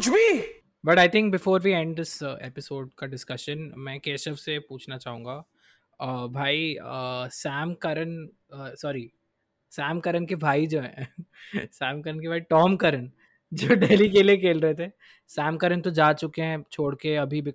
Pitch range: 140-175 Hz